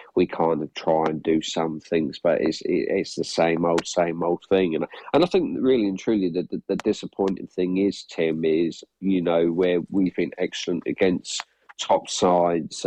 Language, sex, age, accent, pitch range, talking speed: English, male, 40-59, British, 85-95 Hz, 195 wpm